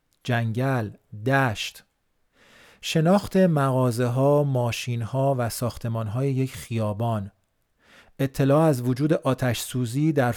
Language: Persian